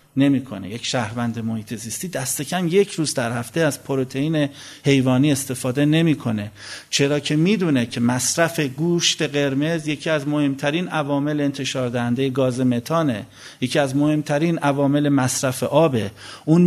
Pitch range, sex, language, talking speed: 125-150 Hz, male, Persian, 135 wpm